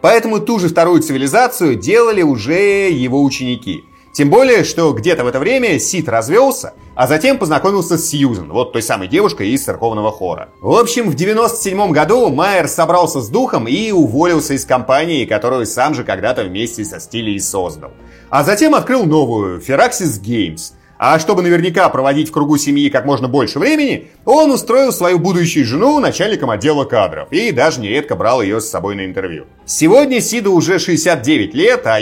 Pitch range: 135-225 Hz